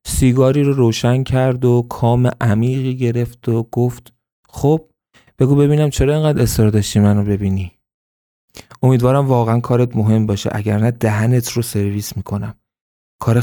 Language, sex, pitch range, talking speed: Persian, male, 105-125 Hz, 140 wpm